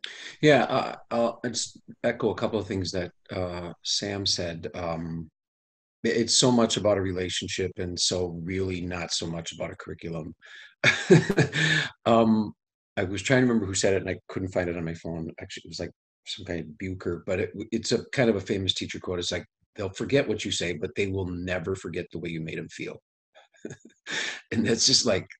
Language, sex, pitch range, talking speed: English, male, 85-110 Hz, 200 wpm